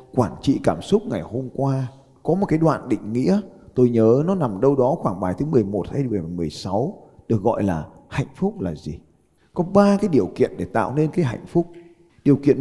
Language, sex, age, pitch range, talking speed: Vietnamese, male, 20-39, 115-170 Hz, 215 wpm